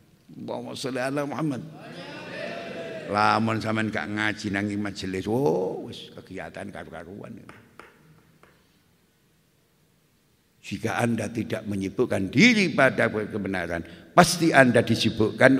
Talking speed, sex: 40 wpm, male